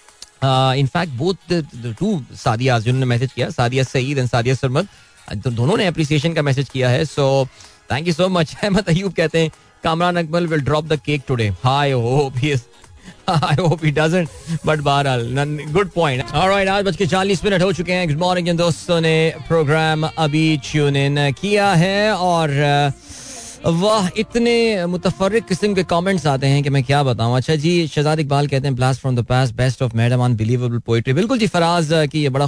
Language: Hindi